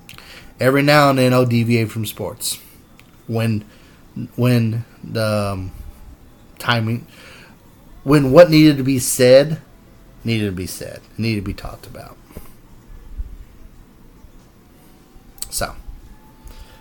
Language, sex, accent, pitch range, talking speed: English, male, American, 110-180 Hz, 105 wpm